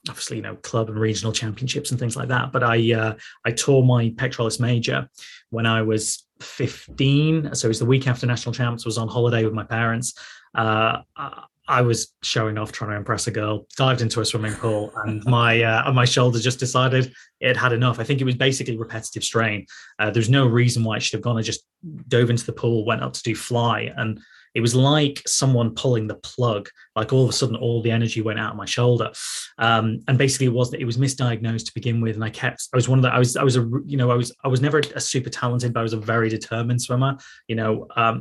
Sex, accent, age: male, British, 20-39